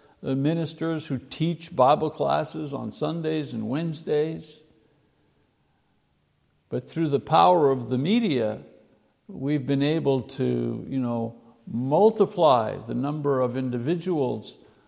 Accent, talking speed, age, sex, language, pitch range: American, 105 wpm, 60-79, male, English, 135-175 Hz